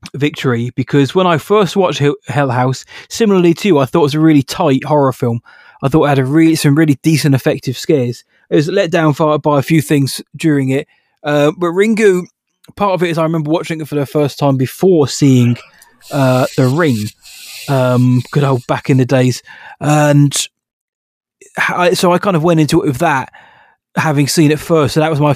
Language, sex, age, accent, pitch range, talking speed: English, male, 20-39, British, 135-170 Hz, 205 wpm